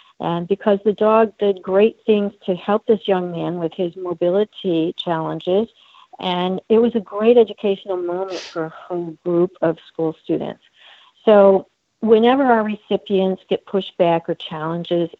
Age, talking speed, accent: 60-79, 150 wpm, American